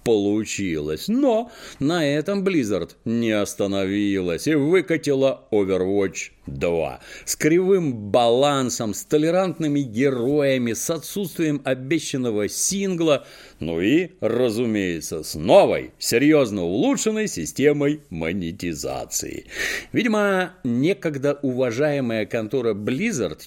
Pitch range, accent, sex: 110-185 Hz, native, male